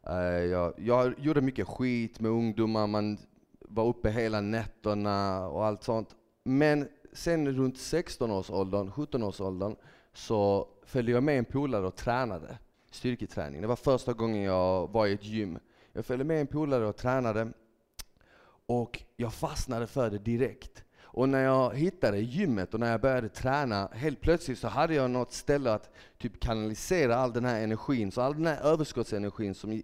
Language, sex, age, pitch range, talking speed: Swedish, male, 30-49, 105-130 Hz, 165 wpm